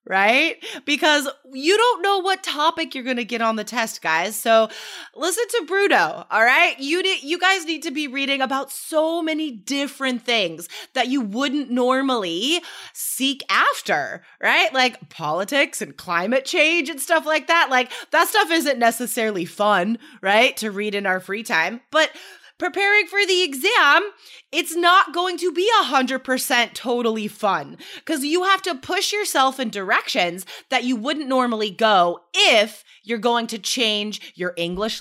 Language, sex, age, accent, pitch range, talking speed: English, female, 20-39, American, 225-335 Hz, 170 wpm